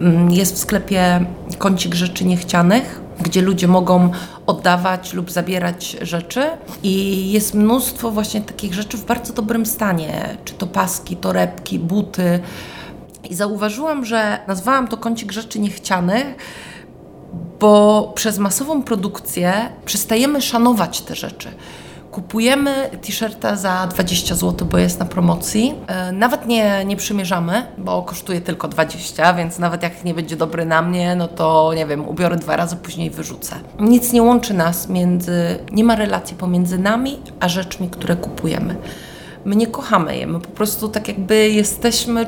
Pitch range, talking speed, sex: 175-220 Hz, 145 wpm, female